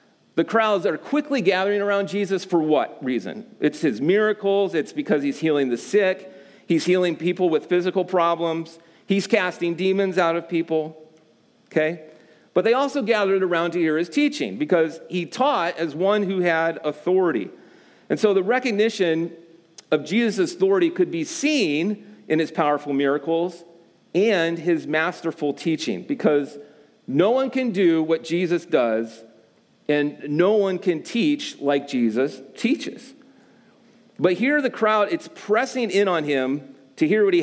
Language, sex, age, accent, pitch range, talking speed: English, male, 40-59, American, 155-215 Hz, 155 wpm